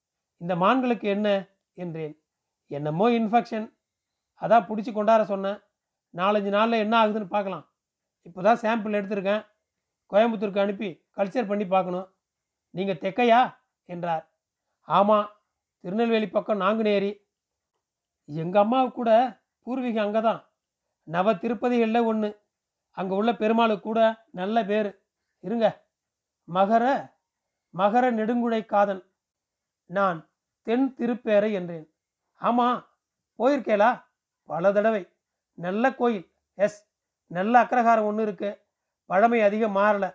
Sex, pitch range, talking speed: male, 190-225 Hz, 100 wpm